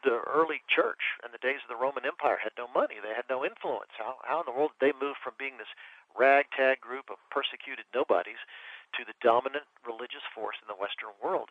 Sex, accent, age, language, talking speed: male, American, 50-69, English, 220 wpm